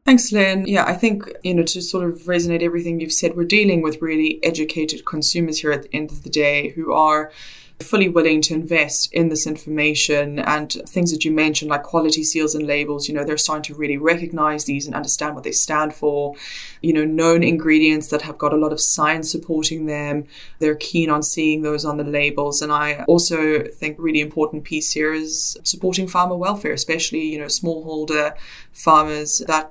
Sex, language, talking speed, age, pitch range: female, English, 200 wpm, 20-39, 150-170 Hz